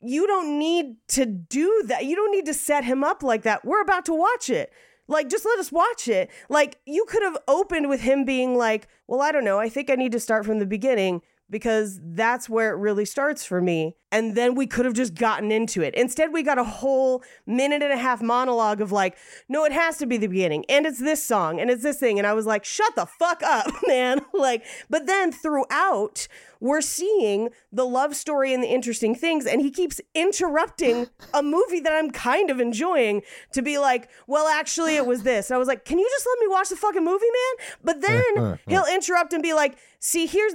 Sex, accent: female, American